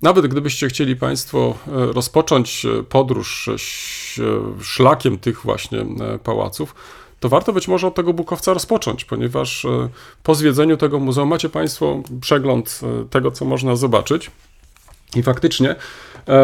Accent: native